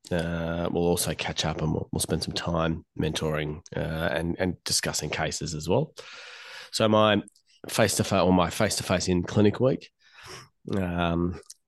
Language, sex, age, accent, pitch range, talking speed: English, male, 20-39, Australian, 85-100 Hz, 170 wpm